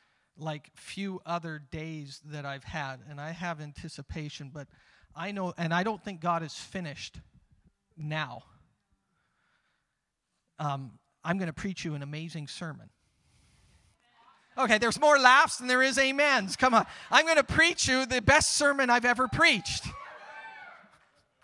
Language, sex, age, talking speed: English, male, 40-59, 145 wpm